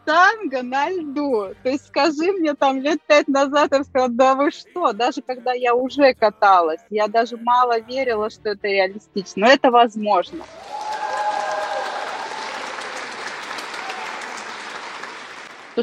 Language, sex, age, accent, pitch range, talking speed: Russian, female, 20-39, native, 215-275 Hz, 120 wpm